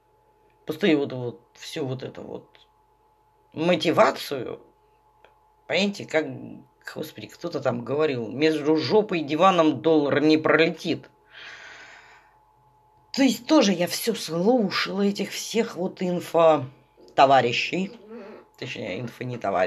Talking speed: 100 wpm